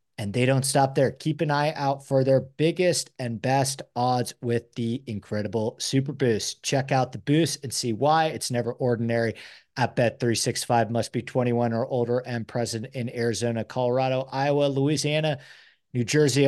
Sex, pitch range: male, 115-140 Hz